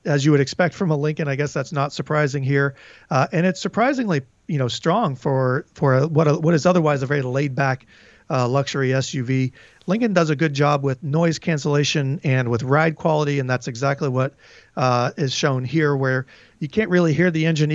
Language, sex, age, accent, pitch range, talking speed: English, male, 40-59, American, 135-160 Hz, 205 wpm